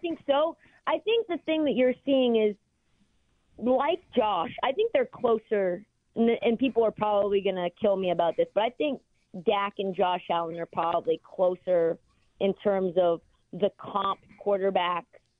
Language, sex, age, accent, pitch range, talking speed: English, female, 30-49, American, 185-215 Hz, 165 wpm